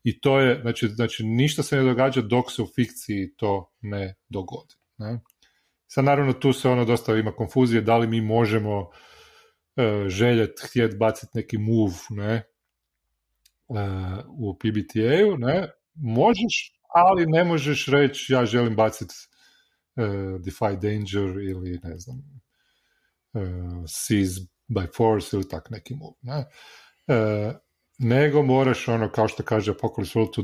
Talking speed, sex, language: 140 wpm, male, Croatian